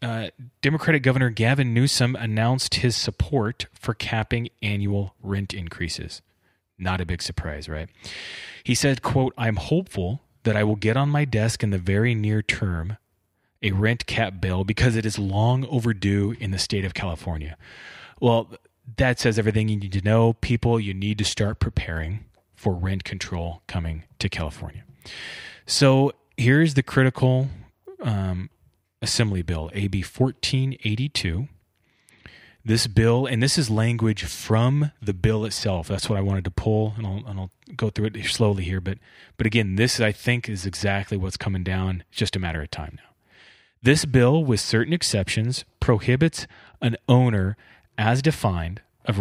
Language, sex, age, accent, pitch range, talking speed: English, male, 30-49, American, 95-125 Hz, 160 wpm